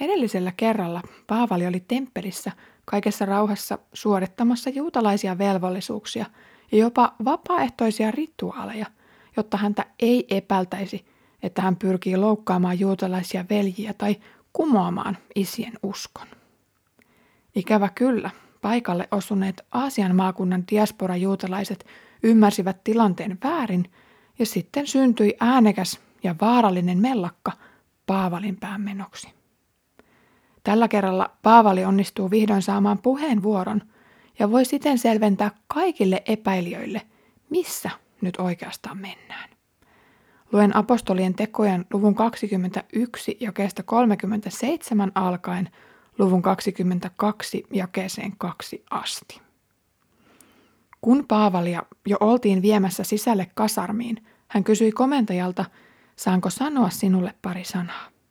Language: Finnish